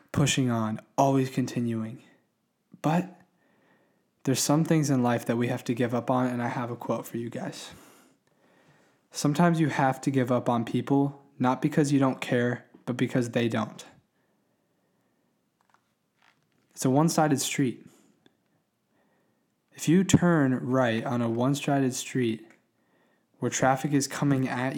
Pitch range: 125-140 Hz